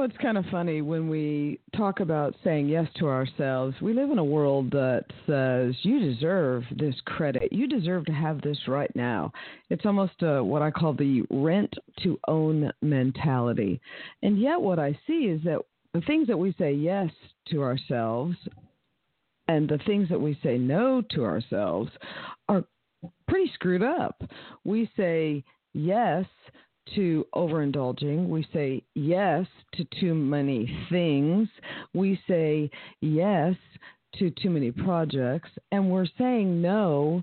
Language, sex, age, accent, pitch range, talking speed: English, female, 50-69, American, 150-190 Hz, 150 wpm